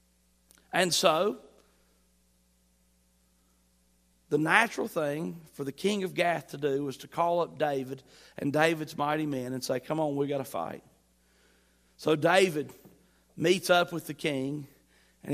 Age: 40-59